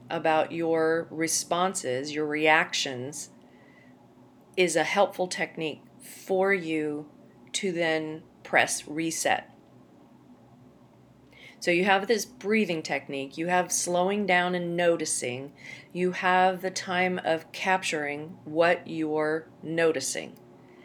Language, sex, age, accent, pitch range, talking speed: English, female, 40-59, American, 155-185 Hz, 105 wpm